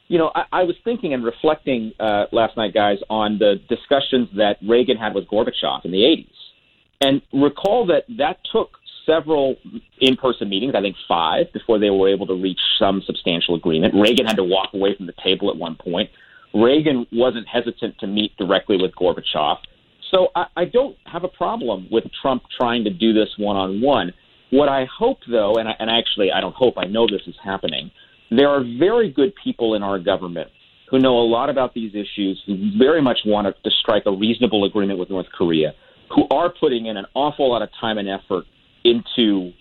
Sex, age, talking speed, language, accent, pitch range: male, 40-59, 195 wpm, English, American, 100-130 Hz